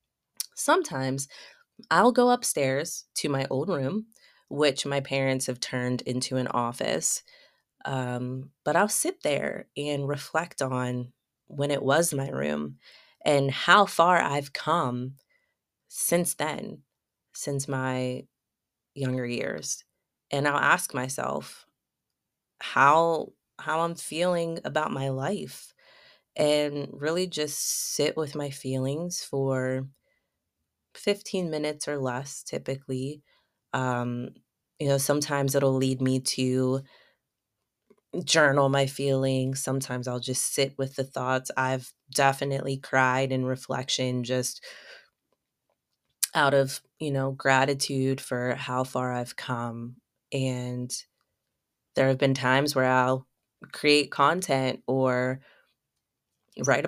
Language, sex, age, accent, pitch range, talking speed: English, female, 20-39, American, 130-145 Hz, 115 wpm